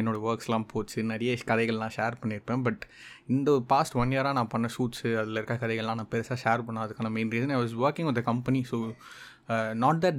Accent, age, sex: native, 20-39, male